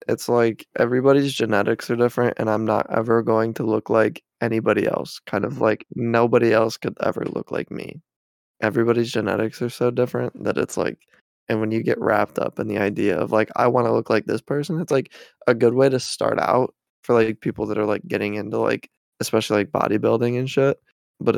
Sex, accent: male, American